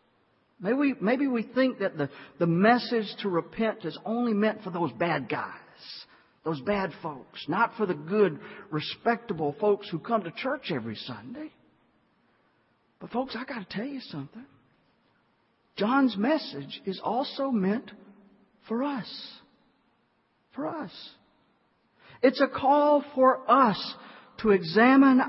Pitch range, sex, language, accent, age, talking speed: 185-250 Hz, male, English, American, 50-69, 135 wpm